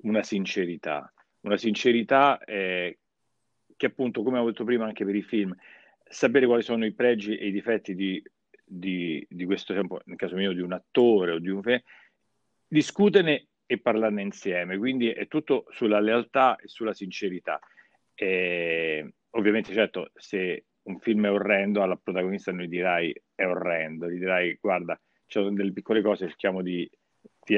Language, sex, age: Italian, male, 40-59